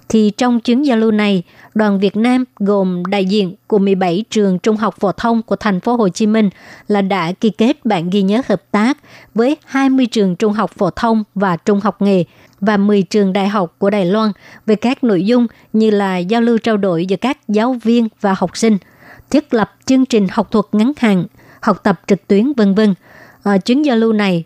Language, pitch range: Vietnamese, 195-230 Hz